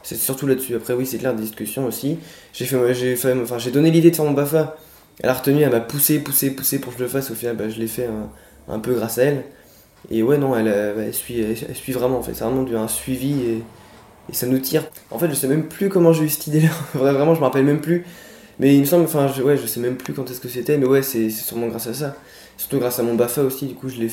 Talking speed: 300 wpm